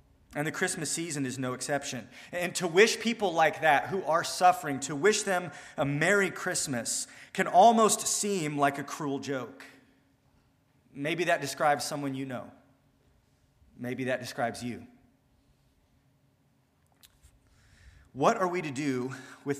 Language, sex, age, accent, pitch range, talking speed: English, male, 30-49, American, 130-165 Hz, 140 wpm